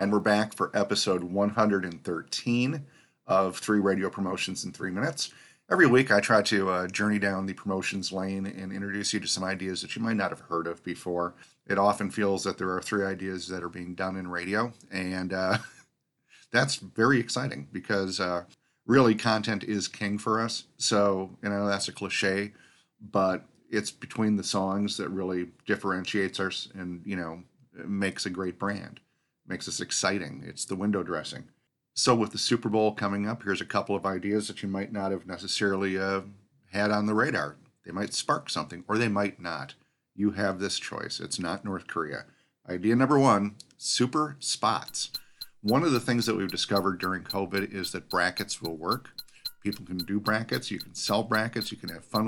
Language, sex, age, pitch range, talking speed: English, male, 40-59, 95-105 Hz, 190 wpm